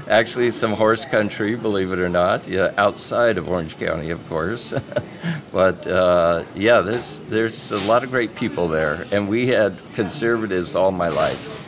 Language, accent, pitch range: English, American, 80-100 Hz